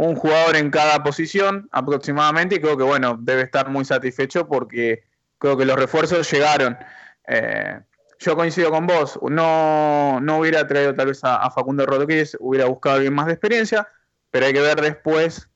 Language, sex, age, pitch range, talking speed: Spanish, male, 20-39, 125-150 Hz, 175 wpm